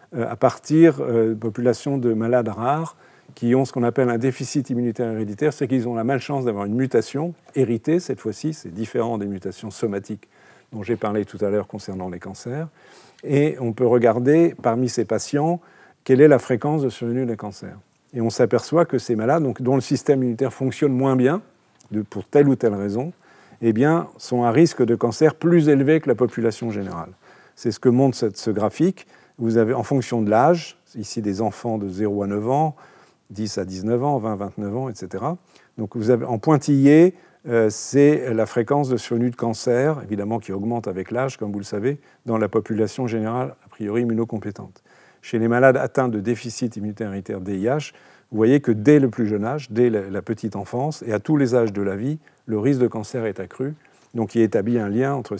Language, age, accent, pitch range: French, 50-69, French, 110-135 Hz